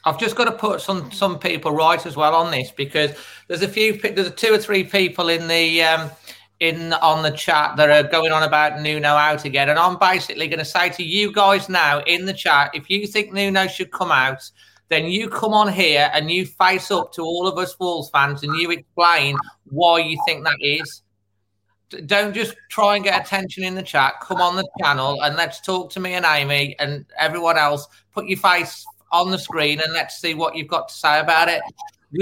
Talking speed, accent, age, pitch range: 225 wpm, British, 30-49, 150-185 Hz